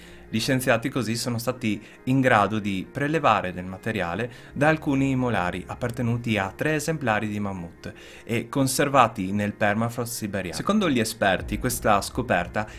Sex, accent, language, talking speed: male, native, Italian, 140 wpm